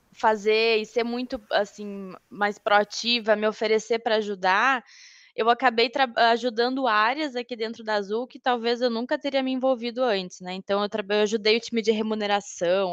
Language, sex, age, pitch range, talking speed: Portuguese, female, 10-29, 200-245 Hz, 175 wpm